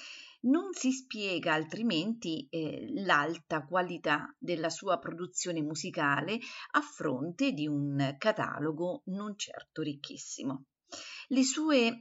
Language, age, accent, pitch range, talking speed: Italian, 50-69, native, 155-210 Hz, 105 wpm